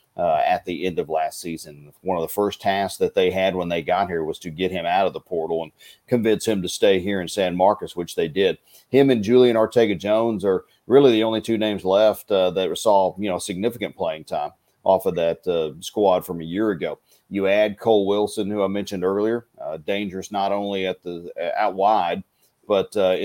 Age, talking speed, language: 40-59, 220 wpm, English